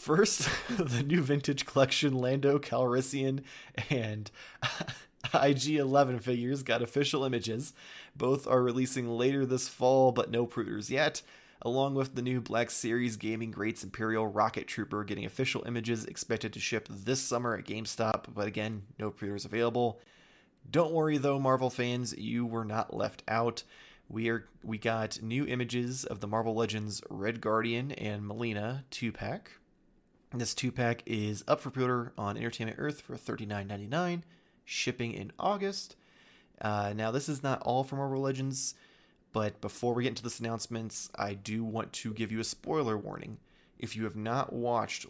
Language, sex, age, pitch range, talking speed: English, male, 20-39, 110-130 Hz, 155 wpm